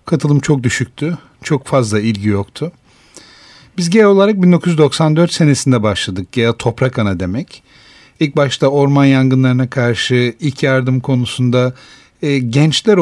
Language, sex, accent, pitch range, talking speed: Turkish, male, native, 120-150 Hz, 120 wpm